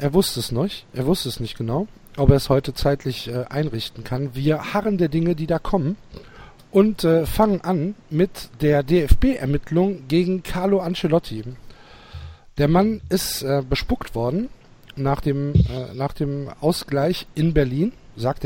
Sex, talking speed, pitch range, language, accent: male, 160 wpm, 130-175 Hz, German, German